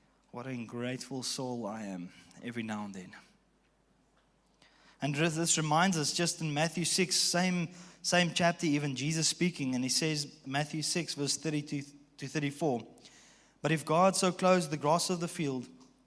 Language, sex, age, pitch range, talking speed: English, male, 20-39, 130-155 Hz, 160 wpm